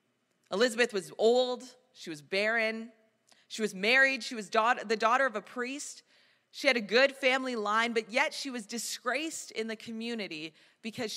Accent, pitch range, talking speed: American, 200-245 Hz, 165 wpm